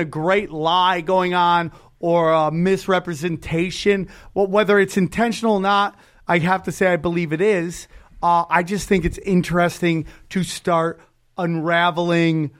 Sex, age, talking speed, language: male, 30-49, 145 wpm, English